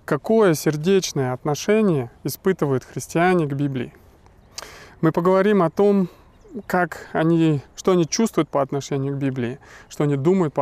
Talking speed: 135 wpm